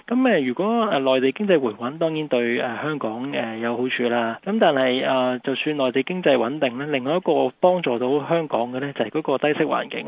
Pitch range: 125-160 Hz